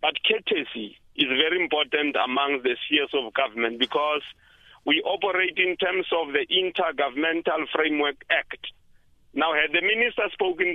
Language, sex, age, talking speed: English, male, 50-69, 140 wpm